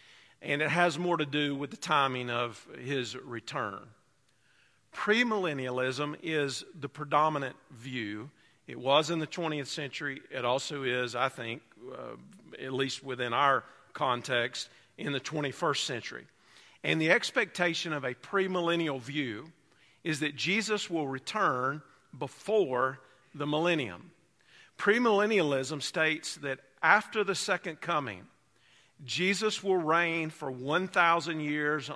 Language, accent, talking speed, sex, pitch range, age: English, American, 125 wpm, male, 130-160 Hz, 50-69